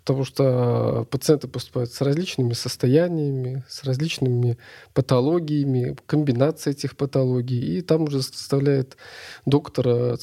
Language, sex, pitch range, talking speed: Russian, male, 125-150 Hz, 110 wpm